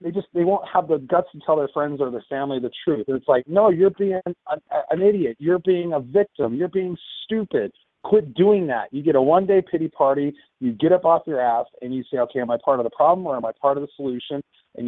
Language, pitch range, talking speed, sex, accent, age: English, 130-175 Hz, 260 wpm, male, American, 30-49